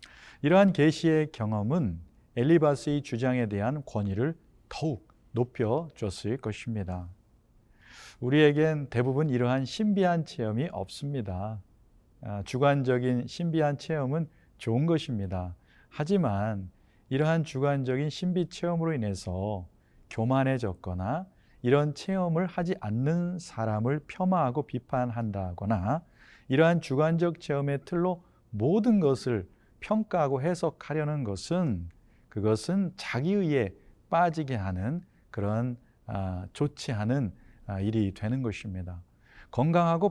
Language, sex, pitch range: Korean, male, 110-155 Hz